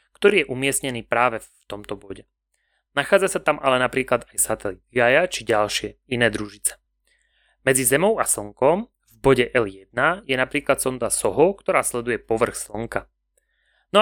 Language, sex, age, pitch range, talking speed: Slovak, male, 30-49, 115-145 Hz, 150 wpm